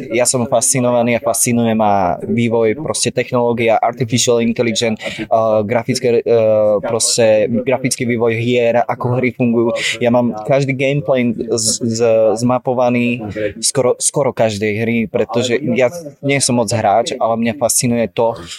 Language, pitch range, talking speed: Slovak, 105-125 Hz, 140 wpm